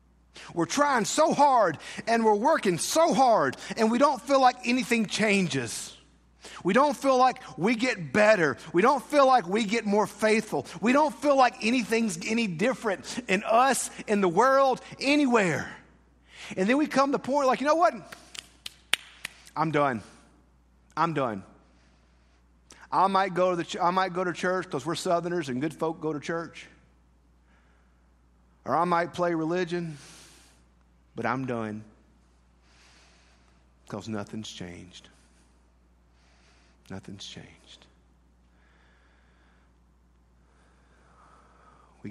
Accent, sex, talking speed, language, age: American, male, 130 wpm, English, 50-69